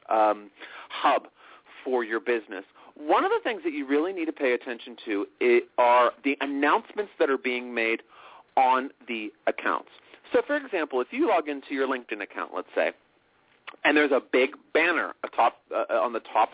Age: 40-59